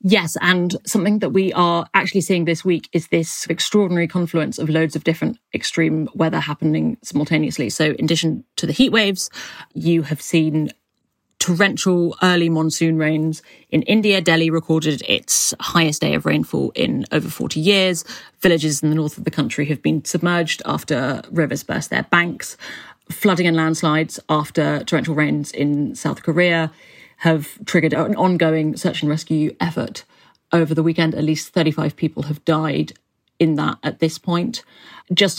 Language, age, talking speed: English, 30-49, 165 wpm